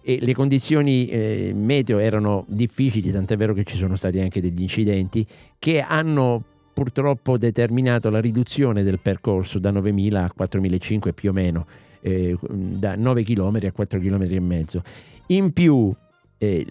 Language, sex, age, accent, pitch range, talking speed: Italian, male, 50-69, native, 100-125 Hz, 155 wpm